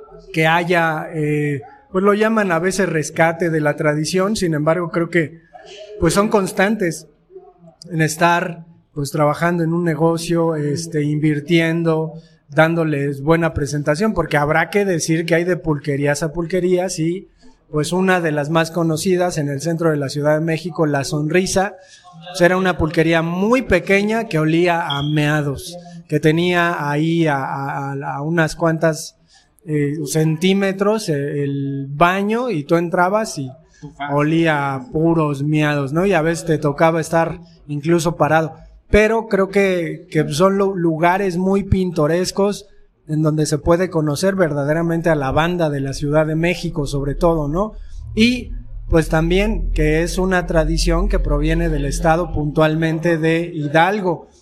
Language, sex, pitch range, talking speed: Spanish, male, 155-180 Hz, 150 wpm